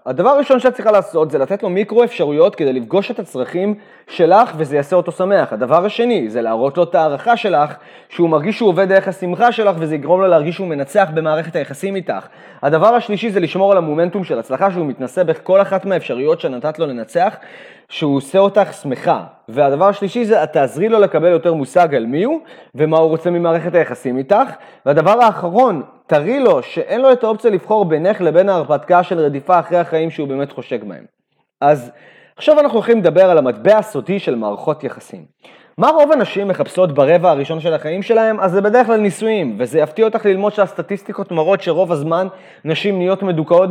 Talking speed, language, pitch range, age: 170 wpm, Hebrew, 160-210 Hz, 30-49